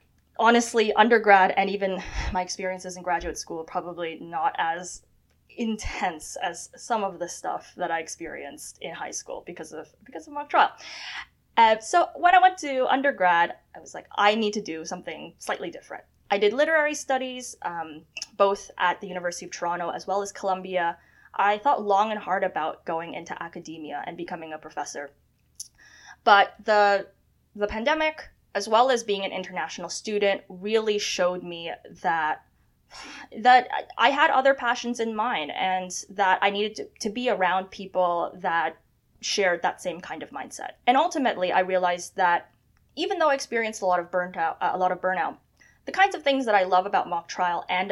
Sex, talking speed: female, 180 wpm